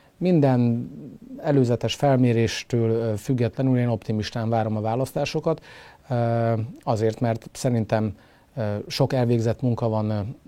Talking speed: 90 wpm